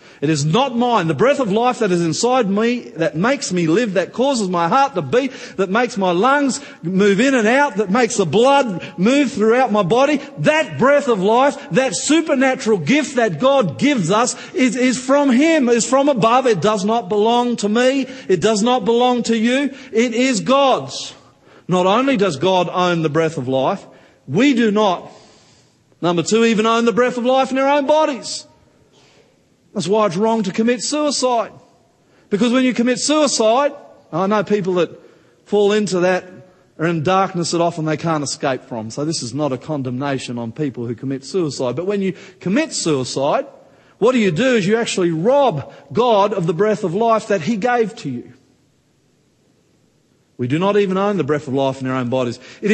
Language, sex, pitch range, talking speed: English, male, 170-250 Hz, 195 wpm